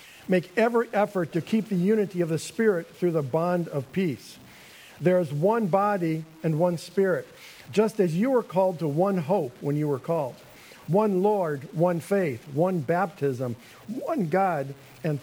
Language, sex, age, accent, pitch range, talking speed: English, male, 50-69, American, 150-195 Hz, 170 wpm